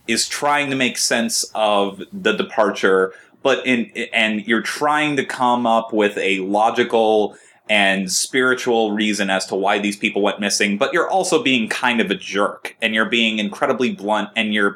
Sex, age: male, 20-39